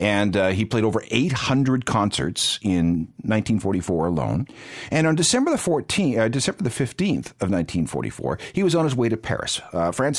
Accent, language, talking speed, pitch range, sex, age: American, English, 175 wpm, 85-130 Hz, male, 50-69